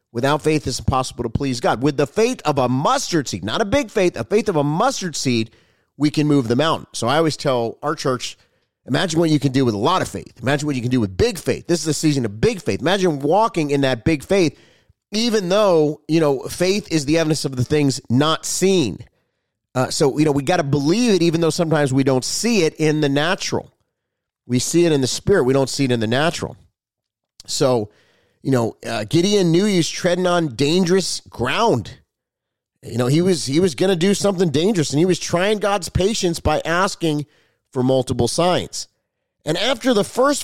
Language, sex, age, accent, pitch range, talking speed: English, male, 30-49, American, 135-185 Hz, 220 wpm